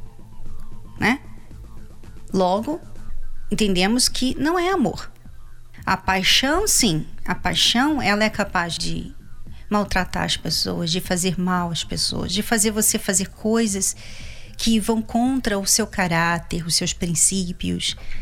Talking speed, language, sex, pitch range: 125 wpm, Portuguese, female, 195-275 Hz